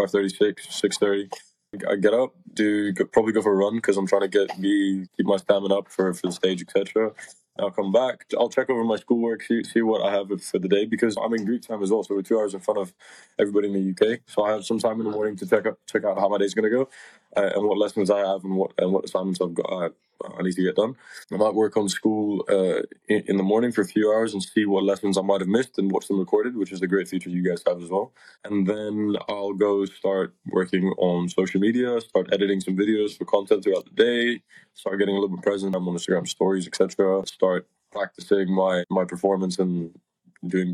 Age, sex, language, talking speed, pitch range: 20-39, male, English, 250 wpm, 95-110 Hz